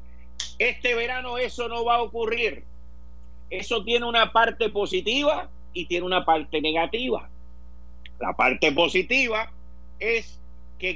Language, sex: Spanish, male